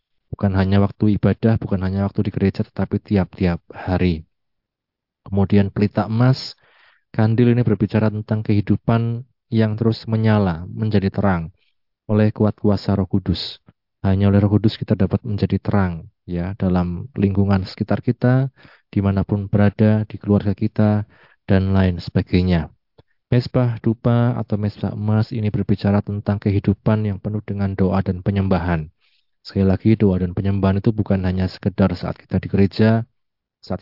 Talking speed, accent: 140 wpm, native